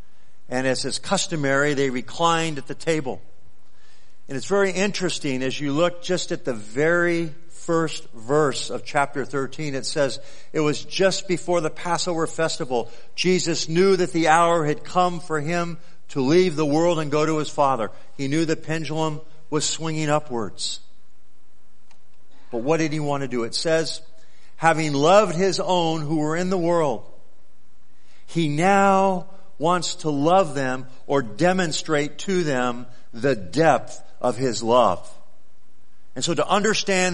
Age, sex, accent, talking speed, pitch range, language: 50-69, male, American, 155 wpm, 140-180 Hz, English